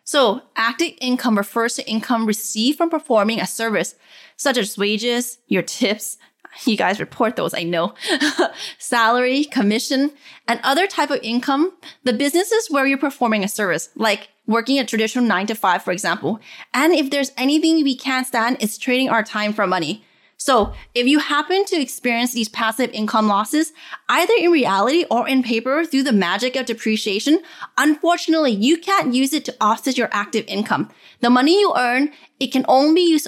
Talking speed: 175 wpm